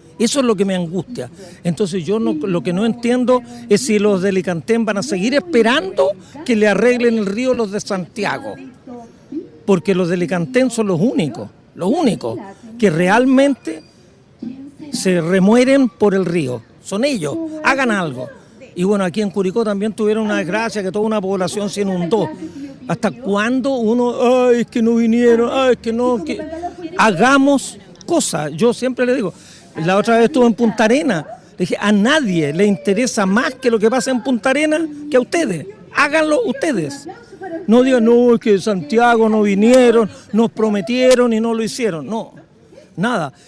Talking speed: 175 wpm